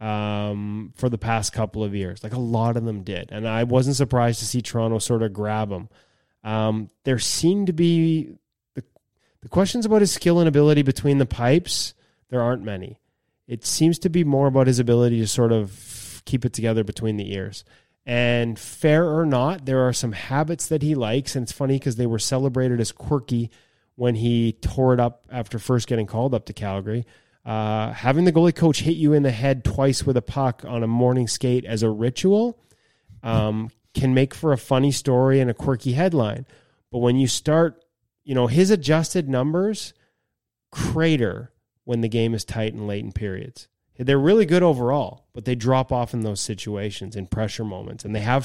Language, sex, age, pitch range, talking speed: English, male, 20-39, 110-135 Hz, 200 wpm